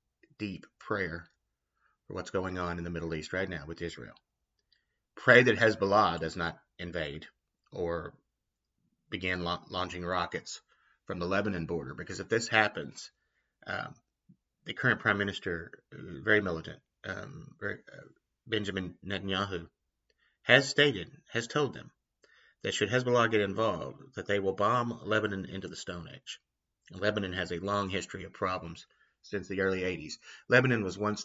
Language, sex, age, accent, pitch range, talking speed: English, male, 30-49, American, 85-105 Hz, 145 wpm